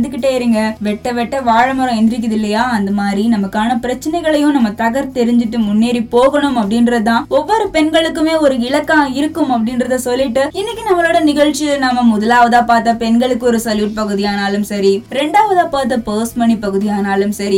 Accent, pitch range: native, 215-285 Hz